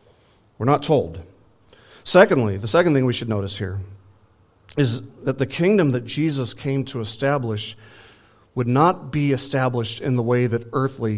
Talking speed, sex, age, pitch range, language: 155 wpm, male, 40-59, 110-140 Hz, English